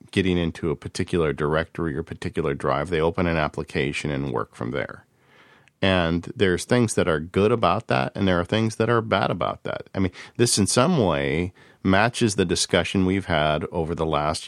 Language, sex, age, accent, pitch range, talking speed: English, male, 40-59, American, 85-105 Hz, 195 wpm